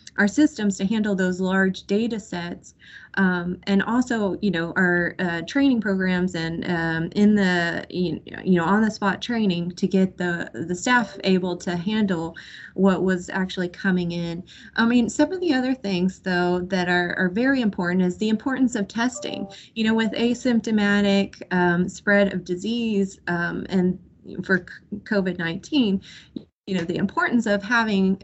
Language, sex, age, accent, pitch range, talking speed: English, female, 20-39, American, 175-210 Hz, 165 wpm